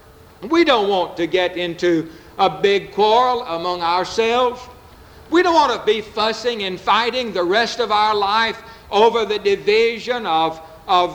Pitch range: 185-270 Hz